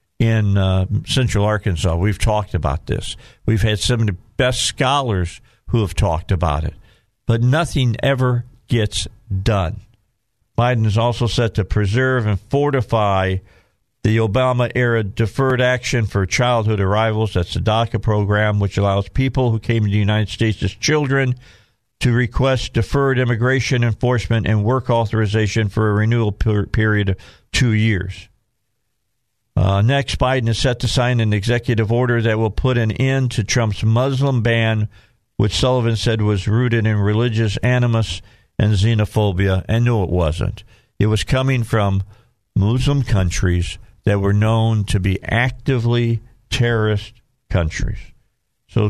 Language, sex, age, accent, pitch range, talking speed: English, male, 50-69, American, 100-120 Hz, 145 wpm